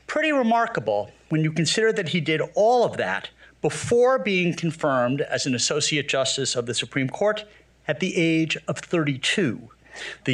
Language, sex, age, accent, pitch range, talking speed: English, male, 50-69, American, 140-195 Hz, 165 wpm